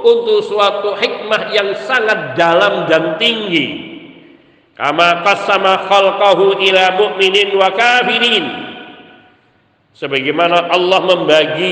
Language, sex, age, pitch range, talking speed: Indonesian, male, 50-69, 165-205 Hz, 90 wpm